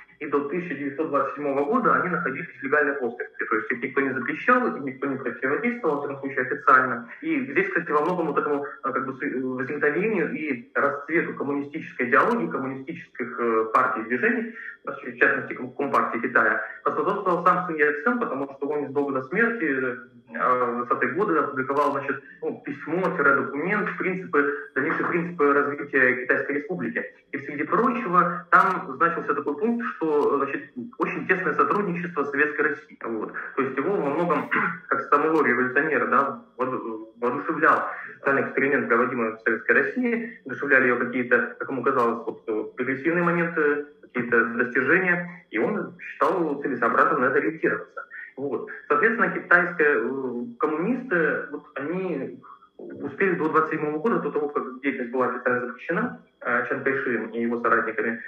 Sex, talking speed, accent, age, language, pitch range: male, 135 wpm, native, 20-39, Russian, 130-185 Hz